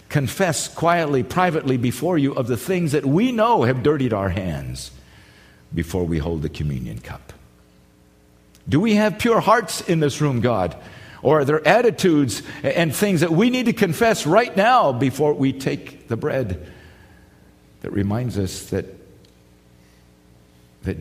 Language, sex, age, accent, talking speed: English, male, 50-69, American, 150 wpm